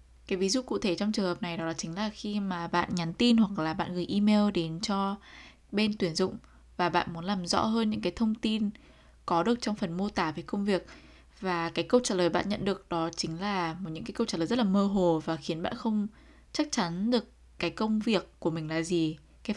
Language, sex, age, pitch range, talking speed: Vietnamese, female, 10-29, 165-210 Hz, 250 wpm